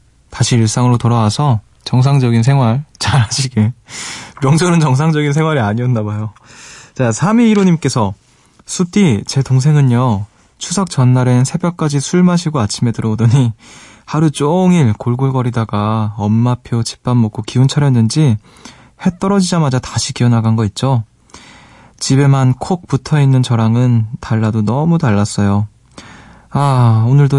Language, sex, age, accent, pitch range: Korean, male, 20-39, native, 110-145 Hz